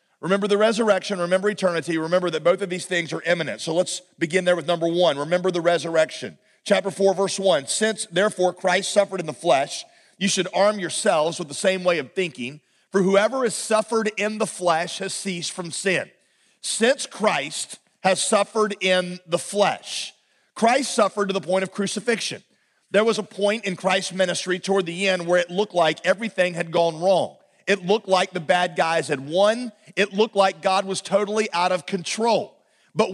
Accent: American